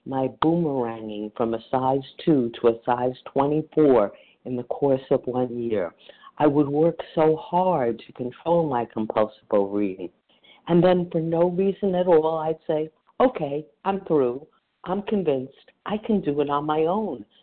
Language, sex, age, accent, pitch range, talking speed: English, female, 50-69, American, 120-175 Hz, 160 wpm